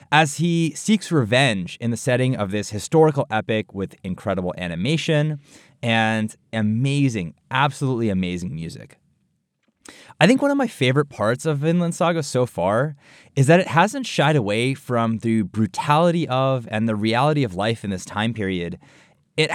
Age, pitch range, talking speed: 20-39, 110-155 Hz, 155 wpm